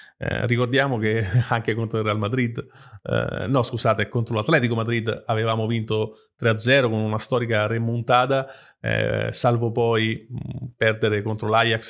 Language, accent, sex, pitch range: Italian, native, male, 110-135 Hz